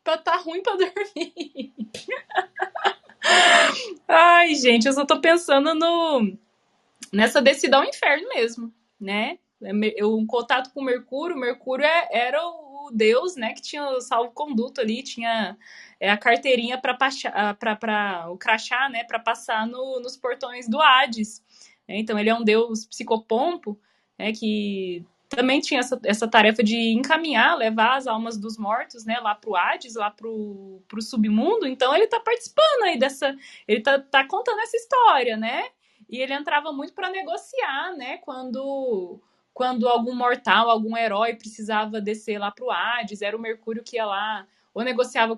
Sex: female